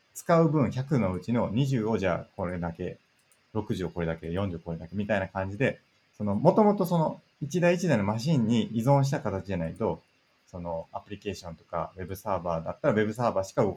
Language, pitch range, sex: Japanese, 95-130 Hz, male